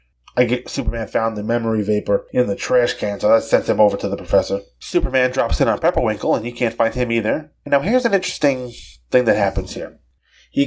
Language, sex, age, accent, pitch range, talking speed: English, male, 30-49, American, 100-125 Hz, 220 wpm